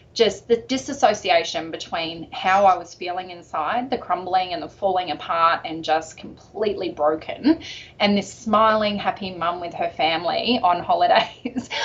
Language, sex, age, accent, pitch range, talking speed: English, female, 20-39, Australian, 165-225 Hz, 145 wpm